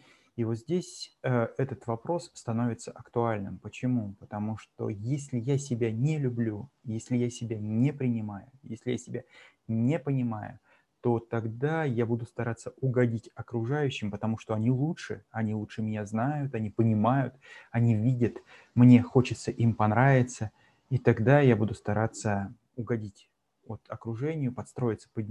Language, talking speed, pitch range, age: Russian, 140 wpm, 115-135 Hz, 30-49